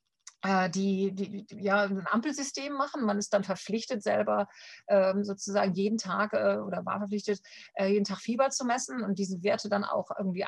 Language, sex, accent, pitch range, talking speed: German, female, German, 190-225 Hz, 185 wpm